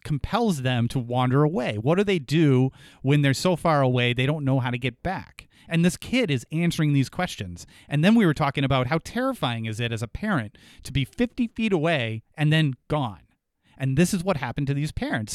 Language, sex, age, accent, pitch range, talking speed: English, male, 30-49, American, 120-155 Hz, 225 wpm